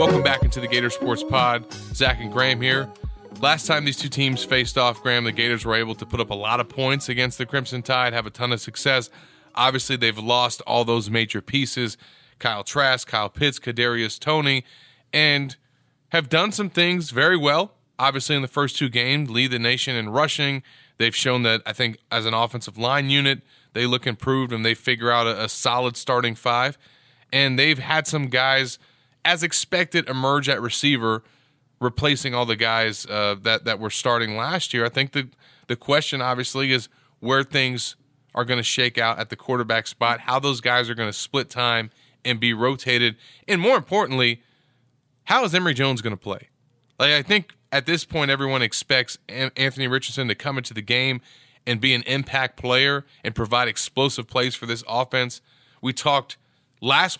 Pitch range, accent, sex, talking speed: 120-140 Hz, American, male, 190 wpm